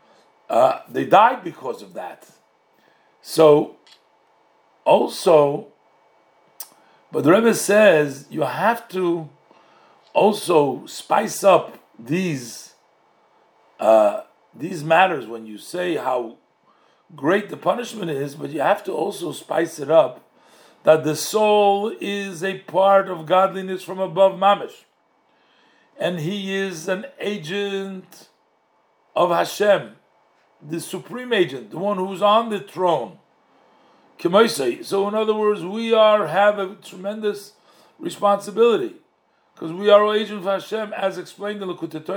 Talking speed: 120 wpm